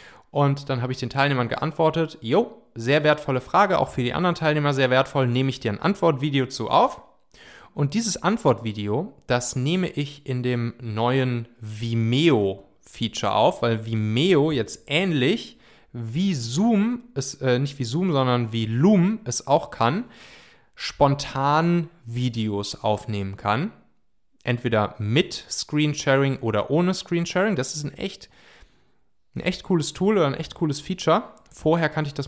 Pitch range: 115-160 Hz